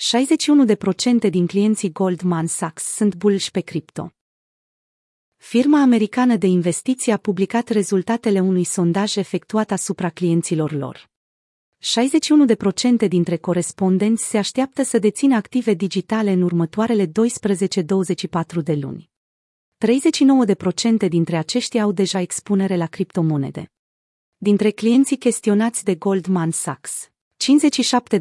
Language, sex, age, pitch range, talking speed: Romanian, female, 30-49, 180-230 Hz, 110 wpm